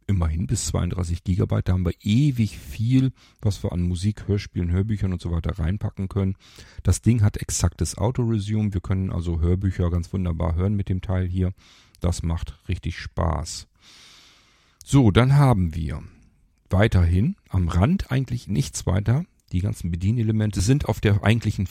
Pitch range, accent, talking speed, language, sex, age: 90-110 Hz, German, 160 wpm, German, male, 40-59